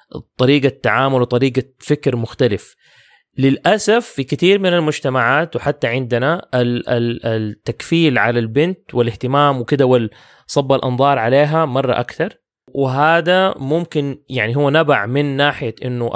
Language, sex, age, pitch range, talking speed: English, male, 20-39, 120-140 Hz, 110 wpm